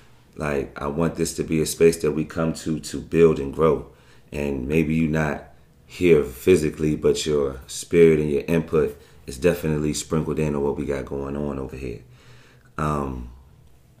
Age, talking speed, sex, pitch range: 30-49, 175 wpm, male, 75-85 Hz